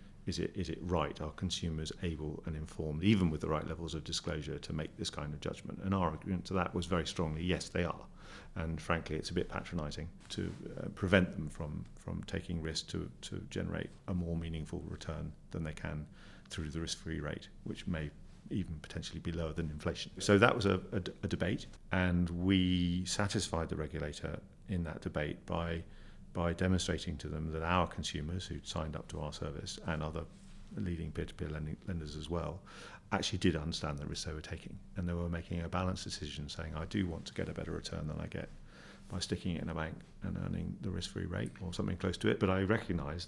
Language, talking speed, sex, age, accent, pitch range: English, 210 wpm, male, 40-59, British, 80-95 Hz